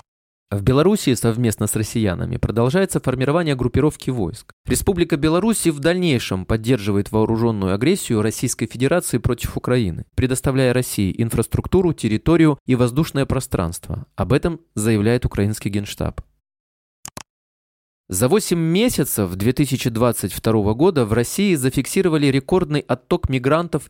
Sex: male